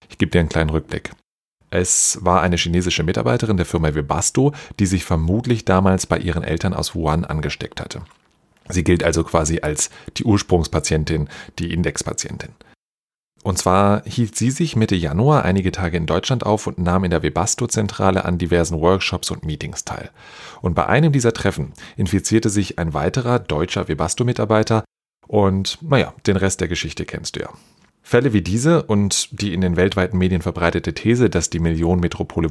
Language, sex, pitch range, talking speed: German, male, 85-105 Hz, 170 wpm